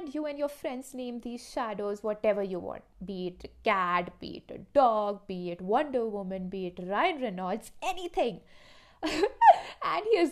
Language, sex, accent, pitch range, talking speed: English, female, Indian, 200-310 Hz, 170 wpm